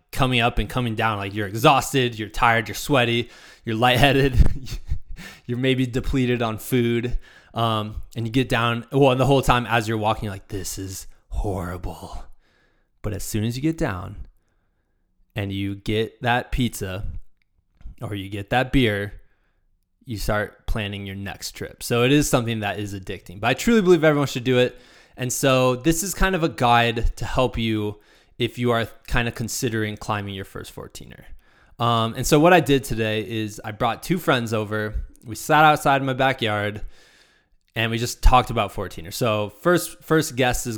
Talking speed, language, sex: 180 wpm, English, male